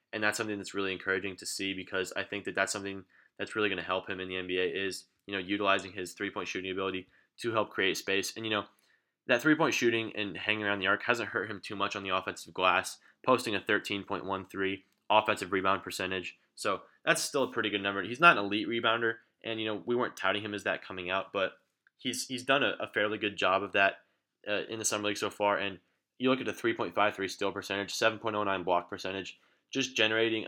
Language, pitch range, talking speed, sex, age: English, 95-110 Hz, 230 wpm, male, 20-39